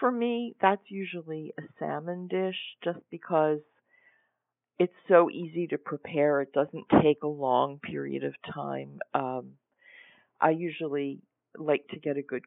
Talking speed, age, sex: 145 wpm, 50-69, female